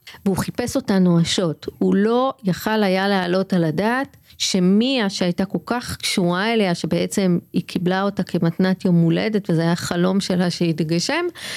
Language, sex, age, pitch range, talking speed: Hebrew, female, 40-59, 180-230 Hz, 150 wpm